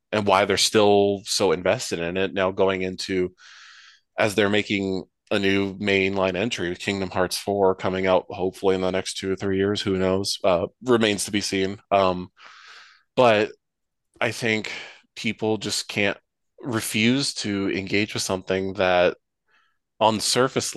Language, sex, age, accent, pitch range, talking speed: English, male, 20-39, American, 95-105 Hz, 155 wpm